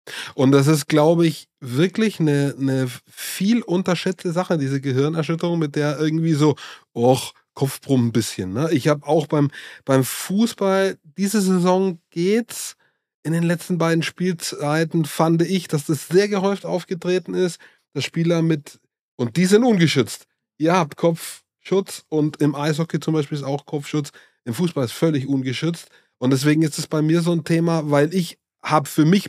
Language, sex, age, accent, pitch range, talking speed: German, male, 20-39, German, 140-170 Hz, 165 wpm